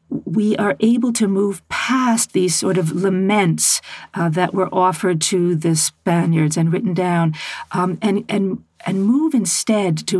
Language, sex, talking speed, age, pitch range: English, female, 160 wpm, 50-69, 160-205 Hz